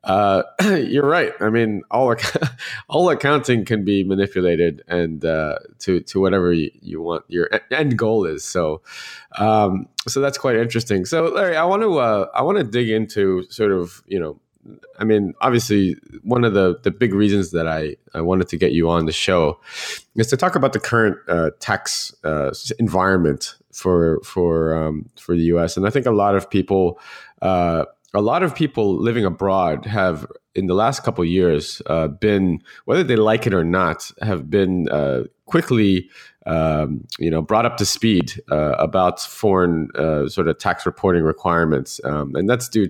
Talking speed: 185 wpm